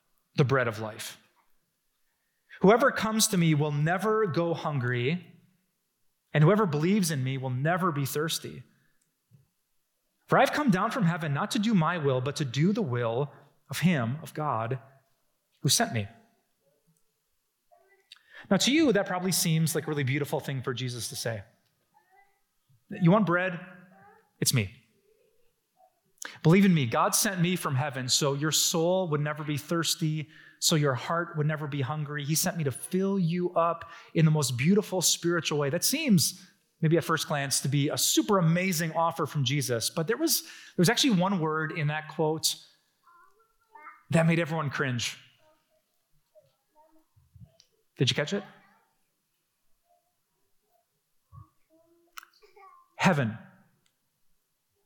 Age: 30-49